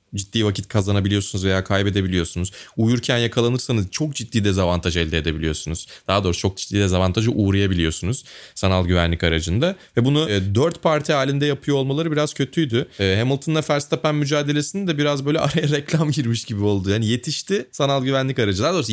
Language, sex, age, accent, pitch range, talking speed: Turkish, male, 30-49, native, 95-145 Hz, 150 wpm